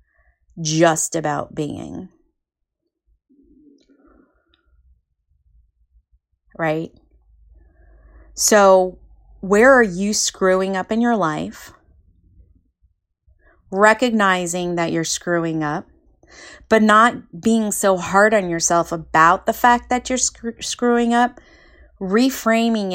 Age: 30-49